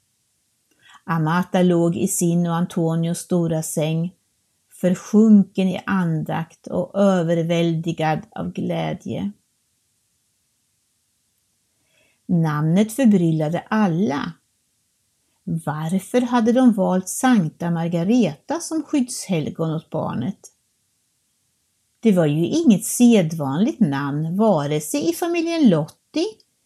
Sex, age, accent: female, 60-79, native